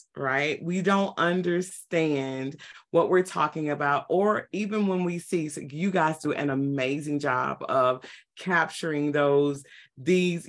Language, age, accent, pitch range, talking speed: English, 30-49, American, 145-175 Hz, 130 wpm